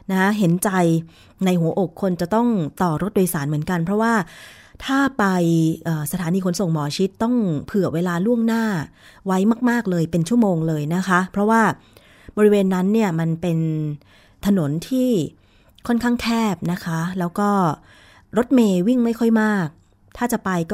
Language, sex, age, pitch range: Thai, female, 20-39, 165-215 Hz